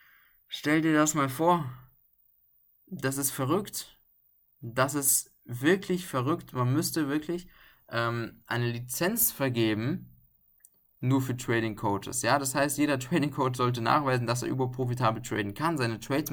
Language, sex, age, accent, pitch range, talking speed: German, male, 20-39, German, 115-145 Hz, 140 wpm